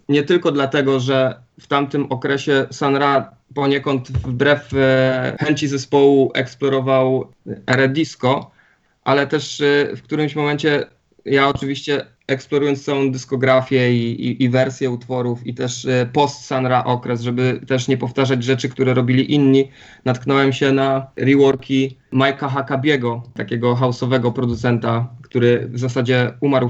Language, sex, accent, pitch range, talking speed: Polish, male, native, 120-140 Hz, 125 wpm